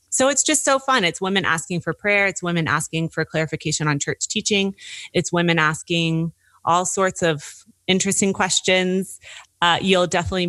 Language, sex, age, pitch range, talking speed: English, female, 30-49, 145-175 Hz, 165 wpm